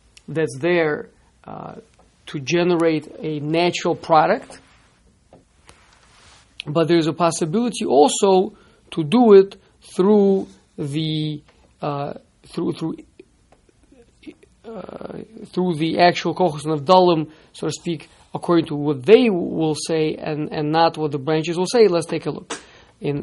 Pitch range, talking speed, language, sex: 155-190 Hz, 130 wpm, English, male